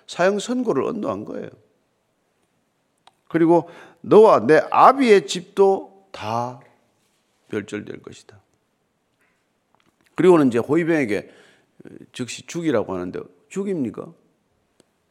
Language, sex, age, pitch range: Korean, male, 50-69, 140-215 Hz